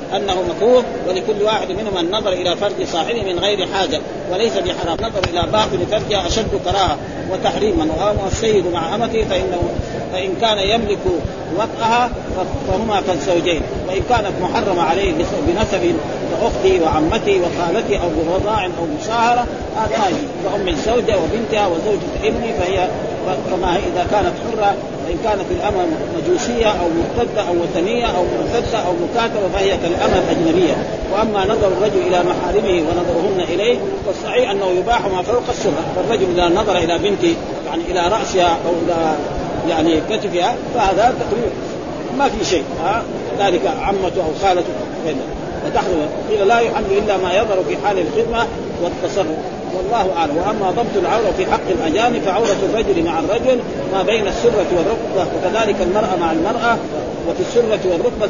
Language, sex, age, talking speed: Arabic, male, 40-59, 140 wpm